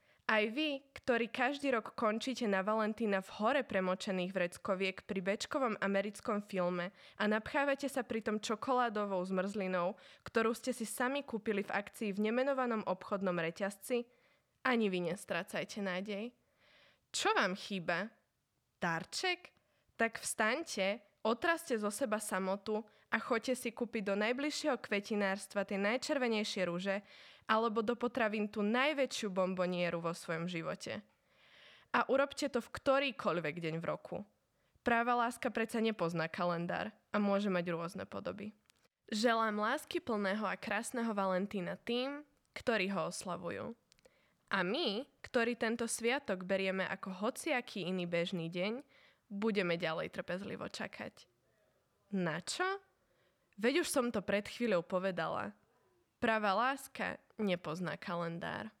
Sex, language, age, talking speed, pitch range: female, Slovak, 20-39, 125 wpm, 190-240 Hz